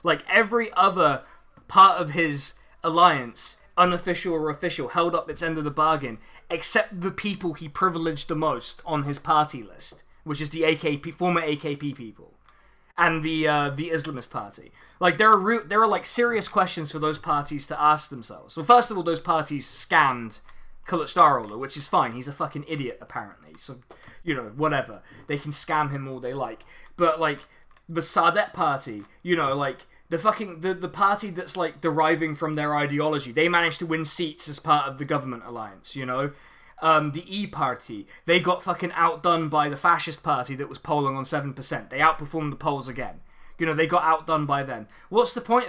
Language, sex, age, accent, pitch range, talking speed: English, male, 20-39, British, 145-175 Hz, 195 wpm